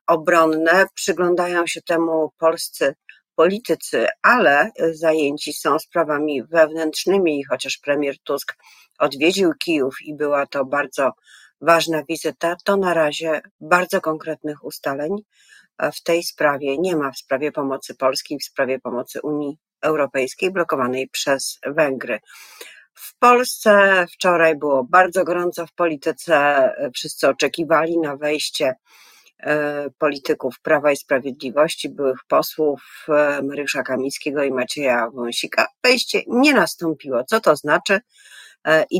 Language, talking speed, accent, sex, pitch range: Polish, 115 wpm, native, female, 145-175 Hz